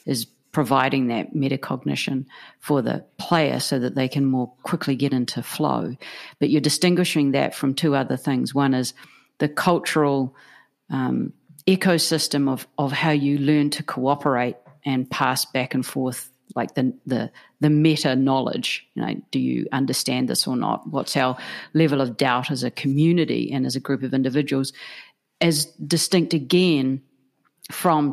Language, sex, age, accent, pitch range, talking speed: English, female, 50-69, Australian, 130-150 Hz, 155 wpm